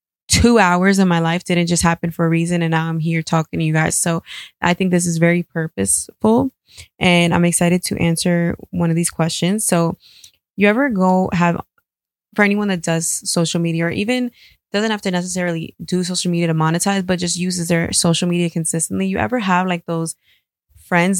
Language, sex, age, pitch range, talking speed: English, female, 20-39, 165-185 Hz, 200 wpm